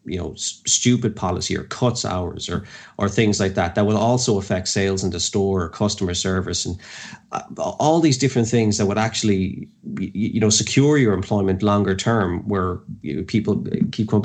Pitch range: 100-120 Hz